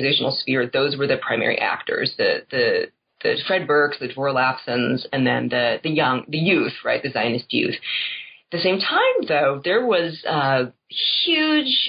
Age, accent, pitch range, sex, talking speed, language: 30-49, American, 140-215 Hz, female, 170 wpm, English